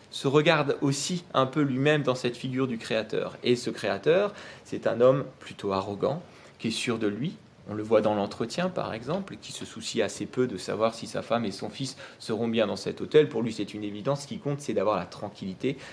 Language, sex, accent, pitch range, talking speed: French, male, French, 110-140 Hz, 230 wpm